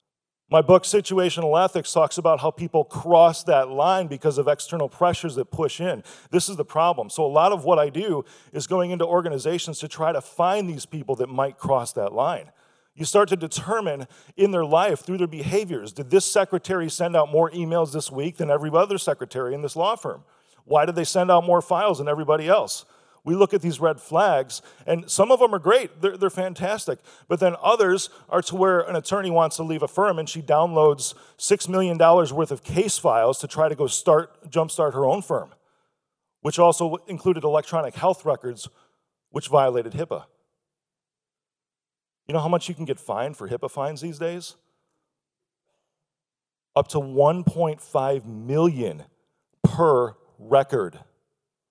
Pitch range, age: 150-180 Hz, 40-59